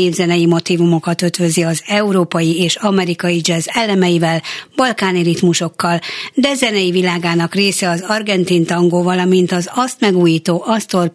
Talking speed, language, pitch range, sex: 125 wpm, Hungarian, 170-205 Hz, female